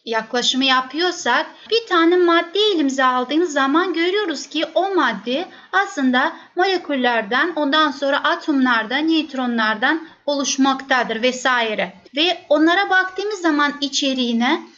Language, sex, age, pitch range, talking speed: Turkish, female, 30-49, 260-360 Hz, 100 wpm